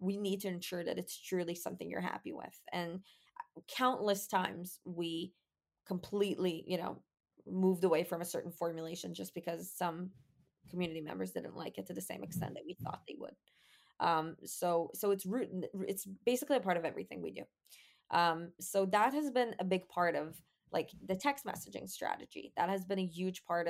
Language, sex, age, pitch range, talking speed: English, female, 20-39, 175-200 Hz, 185 wpm